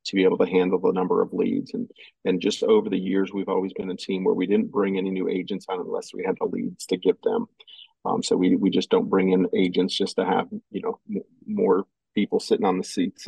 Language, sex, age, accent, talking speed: English, male, 40-59, American, 255 wpm